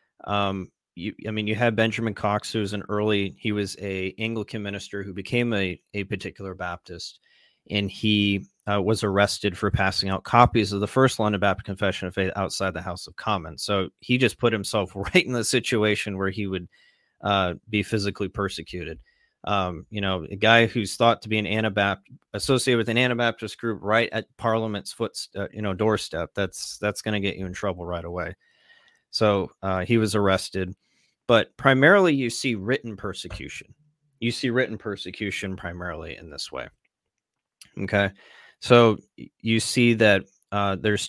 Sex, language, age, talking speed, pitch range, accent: male, English, 30-49, 175 wpm, 95-110 Hz, American